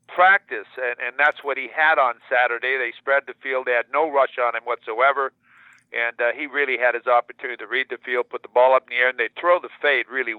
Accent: American